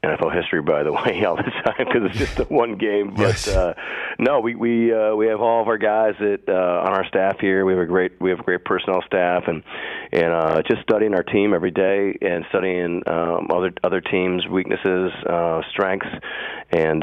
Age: 40-59